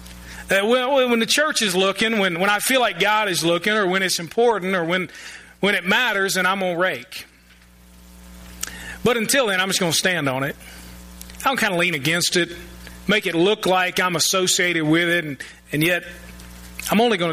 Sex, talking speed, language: male, 205 wpm, English